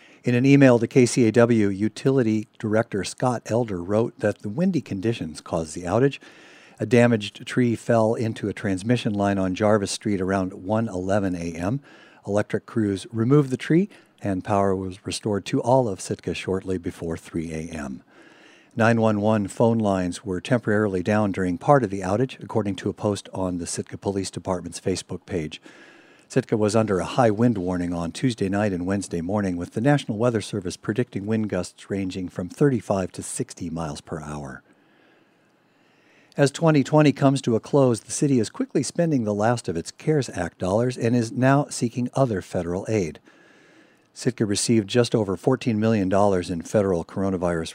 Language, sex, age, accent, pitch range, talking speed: English, male, 50-69, American, 95-125 Hz, 165 wpm